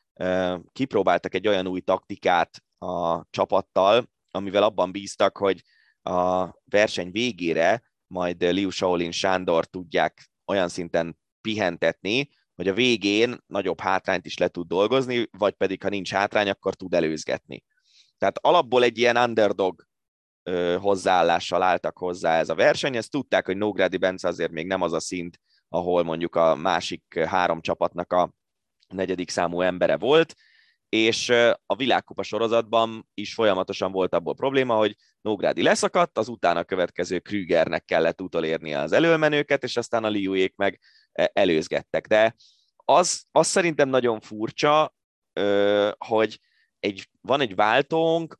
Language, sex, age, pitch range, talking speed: Hungarian, male, 20-39, 90-115 Hz, 135 wpm